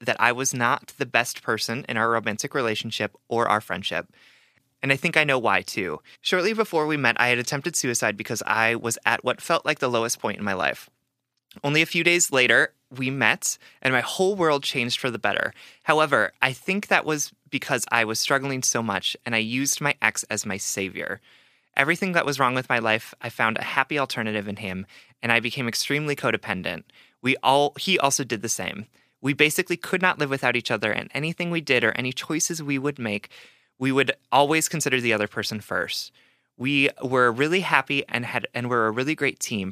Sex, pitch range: male, 110-145 Hz